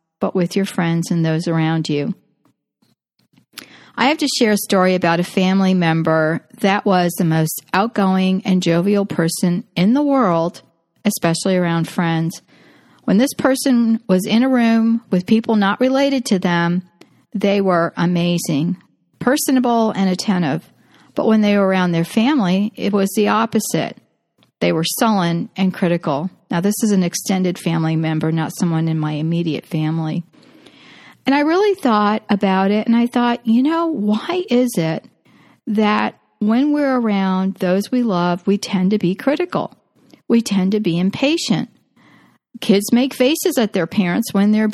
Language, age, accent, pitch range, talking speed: English, 40-59, American, 180-235 Hz, 160 wpm